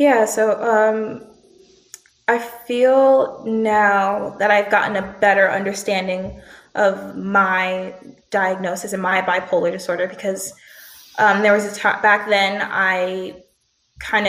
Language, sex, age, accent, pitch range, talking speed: English, female, 20-39, American, 190-215 Hz, 120 wpm